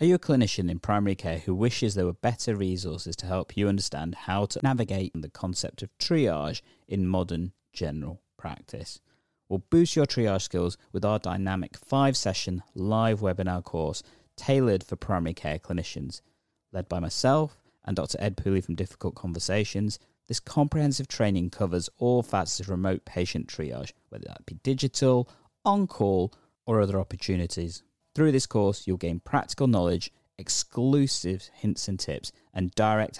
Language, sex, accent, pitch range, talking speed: English, male, British, 90-115 Hz, 155 wpm